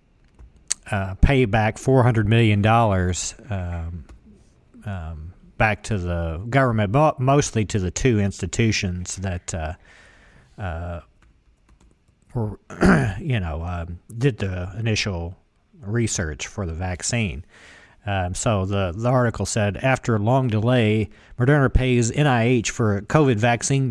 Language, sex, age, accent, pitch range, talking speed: English, male, 50-69, American, 100-125 Hz, 120 wpm